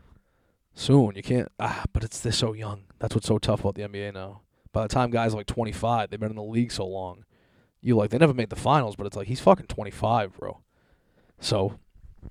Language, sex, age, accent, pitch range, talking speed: English, male, 20-39, American, 100-120 Hz, 220 wpm